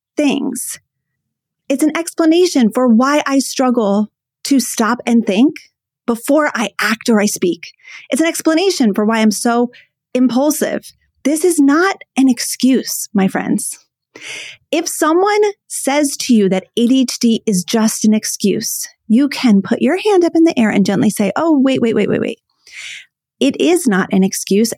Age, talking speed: 30-49, 160 wpm